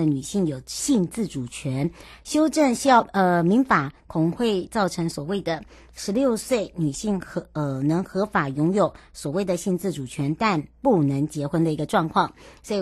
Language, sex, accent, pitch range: Chinese, male, American, 160-205 Hz